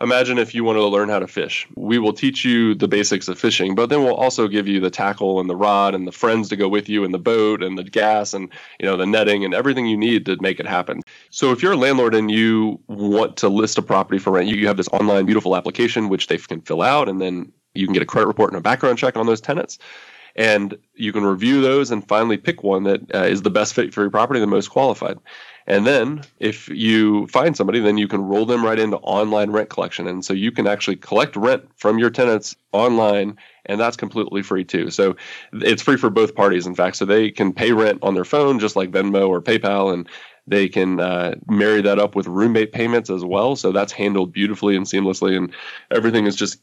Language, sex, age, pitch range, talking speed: English, male, 20-39, 95-110 Hz, 245 wpm